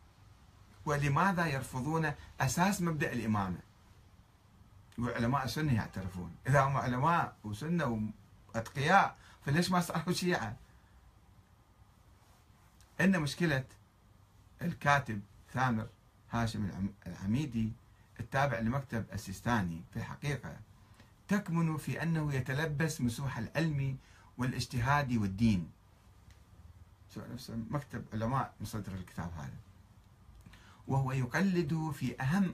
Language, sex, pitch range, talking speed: Arabic, male, 100-155 Hz, 85 wpm